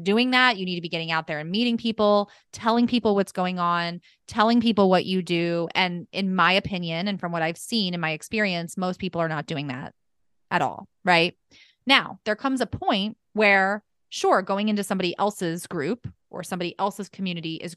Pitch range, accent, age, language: 170-215 Hz, American, 30-49, English